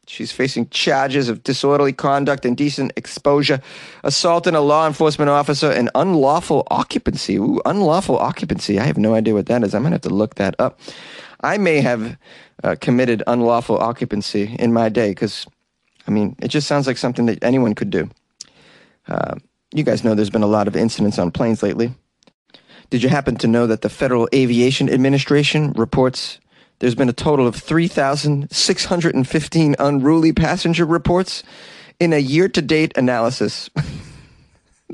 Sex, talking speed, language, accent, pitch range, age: male, 160 wpm, English, American, 120-165 Hz, 30-49